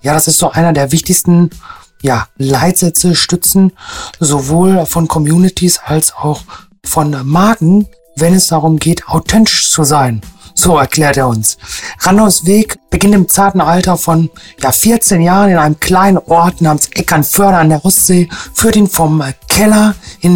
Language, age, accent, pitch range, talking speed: German, 40-59, German, 160-195 Hz, 155 wpm